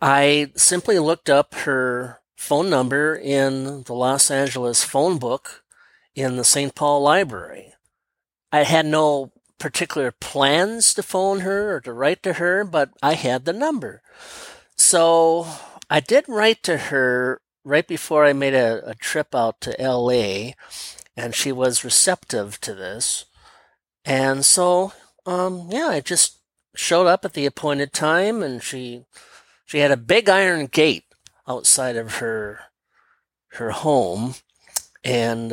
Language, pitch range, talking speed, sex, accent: English, 125-165 Hz, 140 wpm, male, American